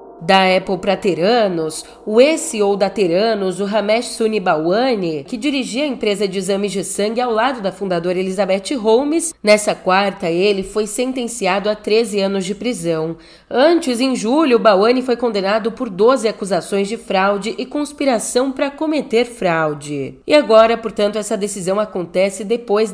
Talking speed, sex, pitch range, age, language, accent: 150 wpm, female, 195-245 Hz, 30-49, Portuguese, Brazilian